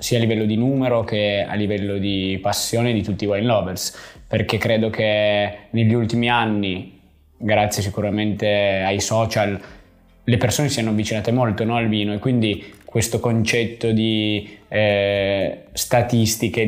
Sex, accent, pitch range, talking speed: male, native, 105-120 Hz, 150 wpm